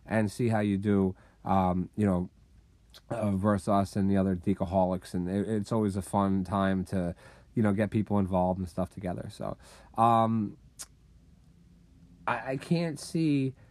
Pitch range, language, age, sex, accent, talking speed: 105-140 Hz, English, 30-49, male, American, 160 wpm